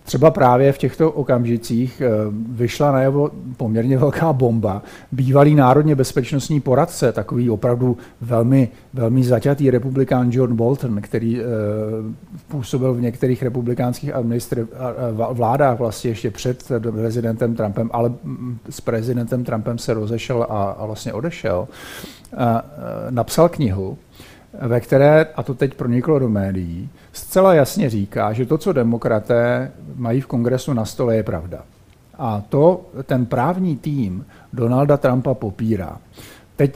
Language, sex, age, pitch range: Czech, male, 50-69, 115-140 Hz